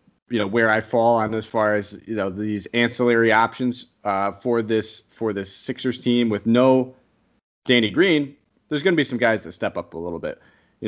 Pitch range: 105-125 Hz